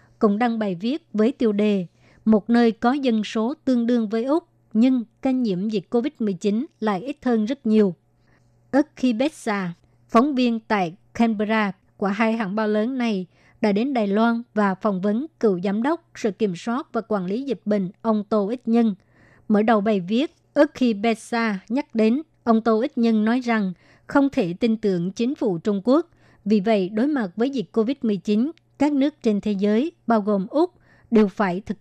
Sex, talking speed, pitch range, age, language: male, 195 wpm, 210-240 Hz, 60-79, Vietnamese